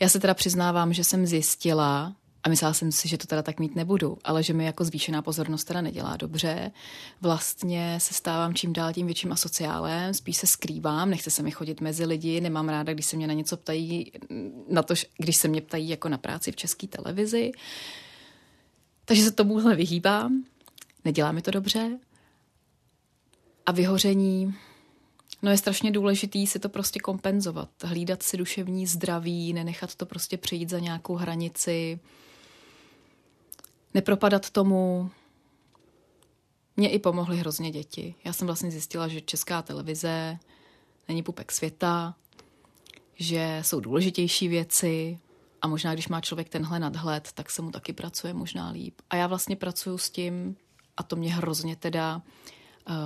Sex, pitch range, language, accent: female, 160-185 Hz, Czech, native